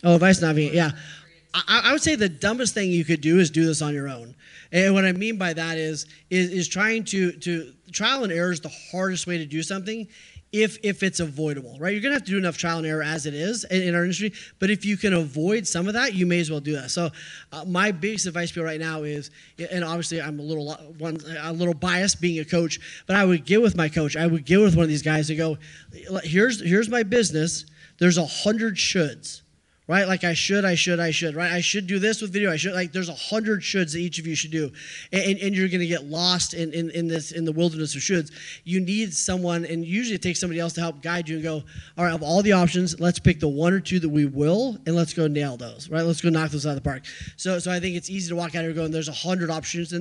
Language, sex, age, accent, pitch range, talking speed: English, male, 30-49, American, 160-190 Hz, 275 wpm